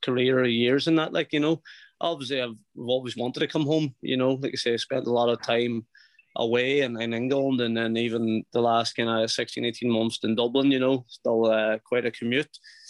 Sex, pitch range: male, 115-135 Hz